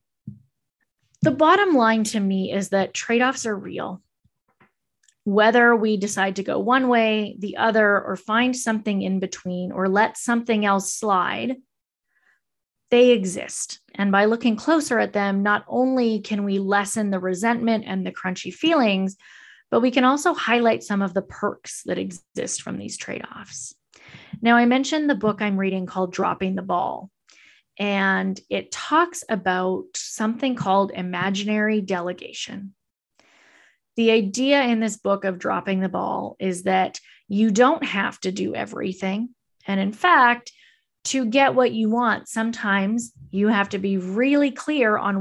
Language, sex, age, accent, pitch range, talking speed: English, female, 20-39, American, 195-235 Hz, 150 wpm